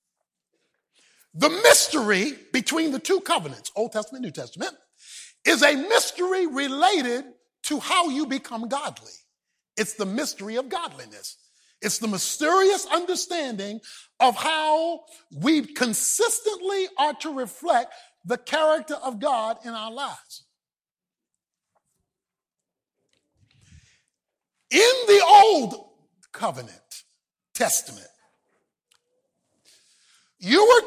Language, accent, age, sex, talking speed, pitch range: English, American, 50-69, male, 95 wpm, 225-335 Hz